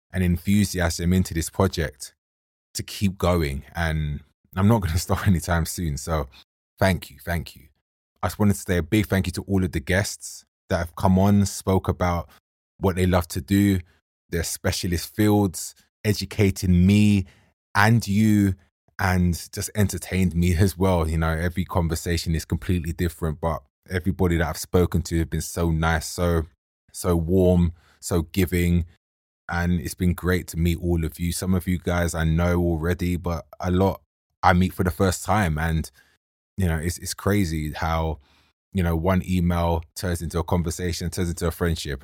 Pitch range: 80-95 Hz